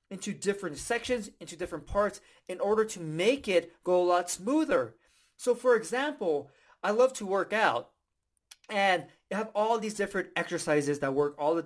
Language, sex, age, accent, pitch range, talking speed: English, male, 30-49, American, 165-250 Hz, 170 wpm